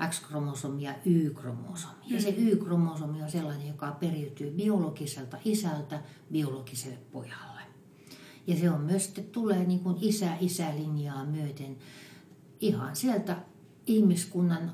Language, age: Finnish, 60-79